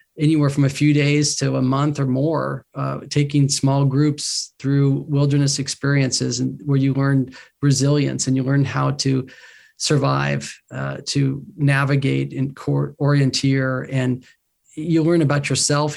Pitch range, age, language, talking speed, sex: 130-145 Hz, 40-59, English, 145 wpm, male